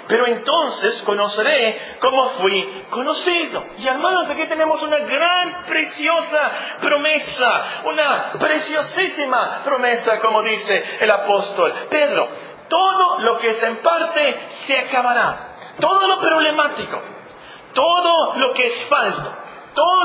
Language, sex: Spanish, male